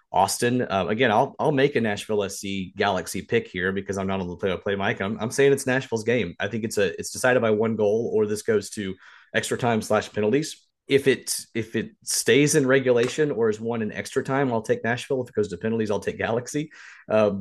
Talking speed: 240 wpm